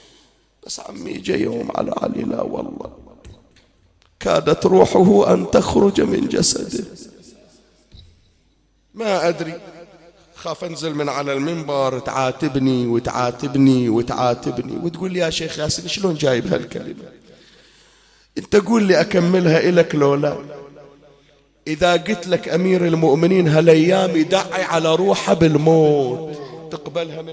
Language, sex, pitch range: Arabic, male, 145-185 Hz